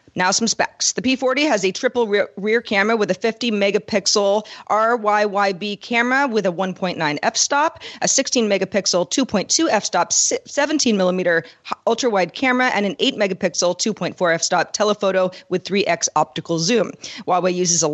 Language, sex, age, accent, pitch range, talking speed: English, female, 40-59, American, 175-225 Hz, 145 wpm